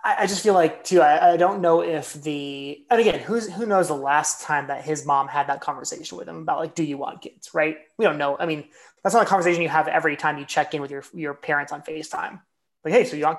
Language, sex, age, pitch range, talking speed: English, male, 20-39, 145-175 Hz, 275 wpm